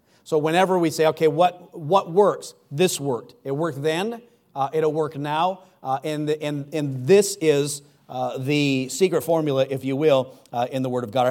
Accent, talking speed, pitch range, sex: American, 200 wpm, 135-160 Hz, male